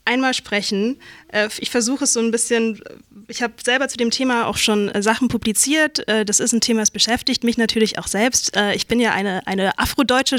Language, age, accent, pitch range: German, 20-39, German, 215-250 Hz